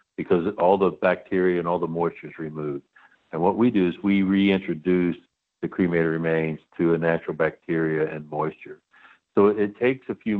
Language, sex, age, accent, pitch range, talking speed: English, male, 60-79, American, 80-100 Hz, 180 wpm